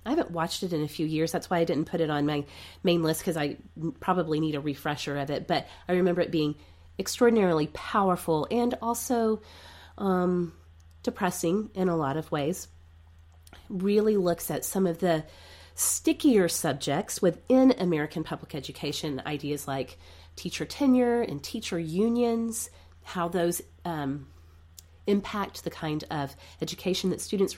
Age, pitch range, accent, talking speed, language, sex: 30-49, 145-200 Hz, American, 155 wpm, English, female